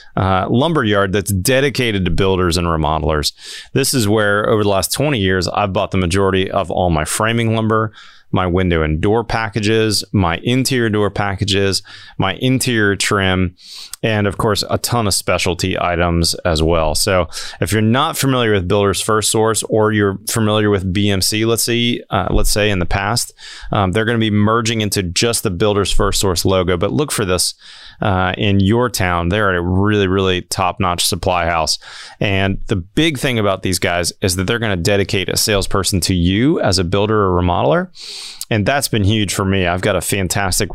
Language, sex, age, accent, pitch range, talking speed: English, male, 30-49, American, 95-110 Hz, 190 wpm